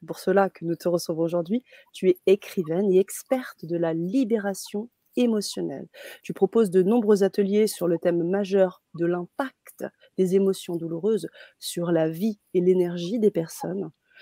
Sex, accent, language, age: female, French, French, 30-49